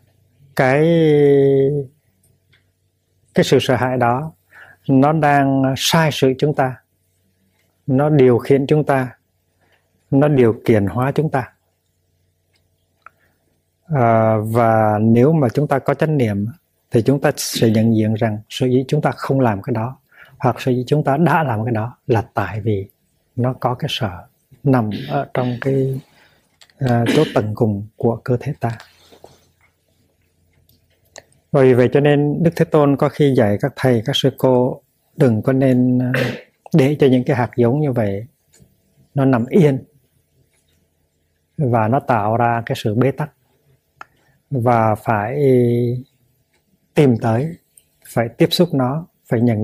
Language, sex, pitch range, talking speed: Vietnamese, male, 110-140 Hz, 145 wpm